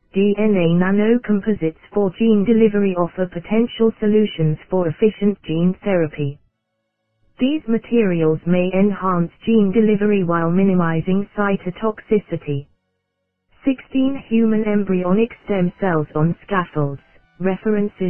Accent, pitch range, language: British, 175-215 Hz, English